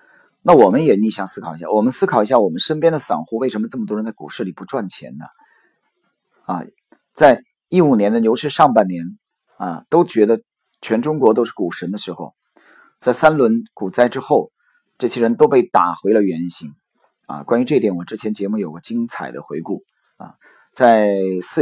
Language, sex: Chinese, male